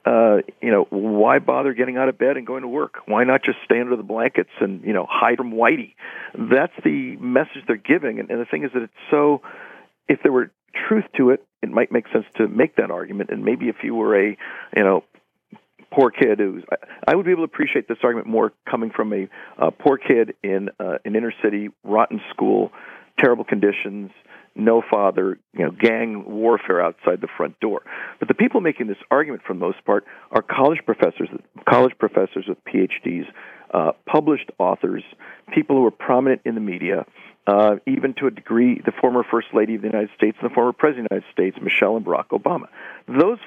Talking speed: 205 wpm